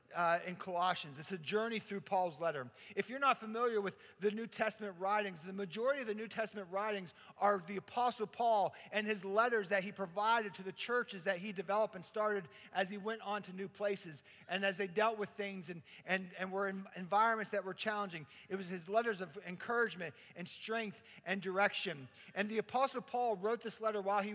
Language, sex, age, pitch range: English, male, 50-69, 195-235 Hz